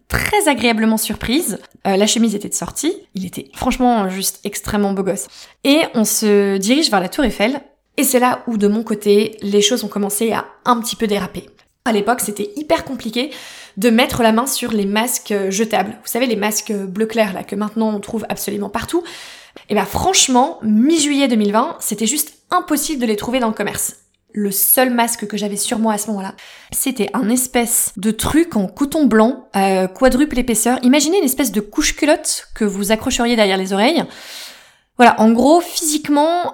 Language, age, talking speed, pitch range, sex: French, 20-39, 190 wpm, 210-255 Hz, female